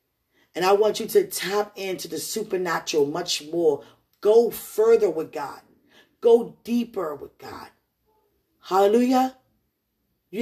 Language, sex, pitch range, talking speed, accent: English, female, 205-280 Hz, 120 wpm, American